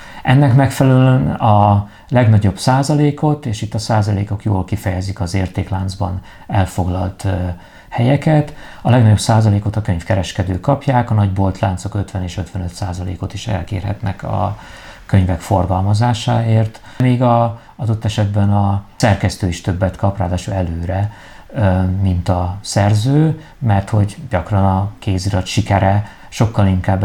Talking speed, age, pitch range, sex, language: 120 wpm, 50-69, 95-110 Hz, male, Hungarian